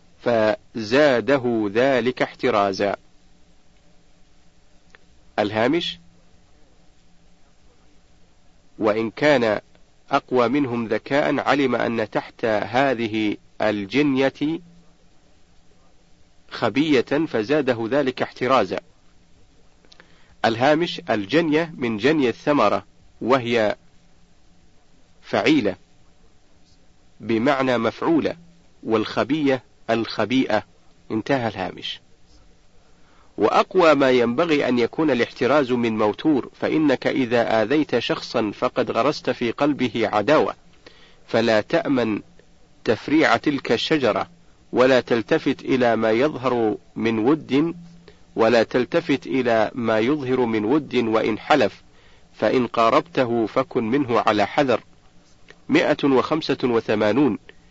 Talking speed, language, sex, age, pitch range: 80 wpm, Arabic, male, 40-59, 105-140 Hz